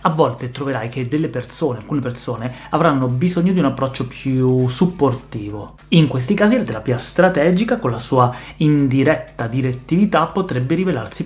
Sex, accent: male, native